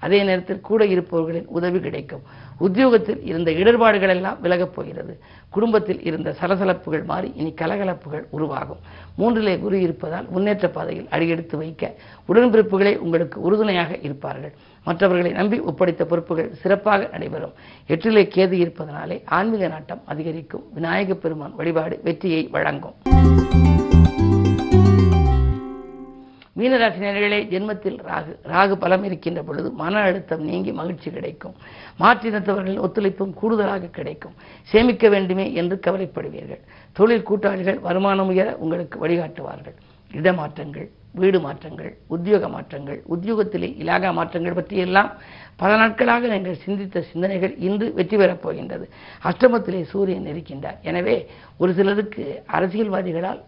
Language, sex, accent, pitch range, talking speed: Tamil, female, native, 165-200 Hz, 105 wpm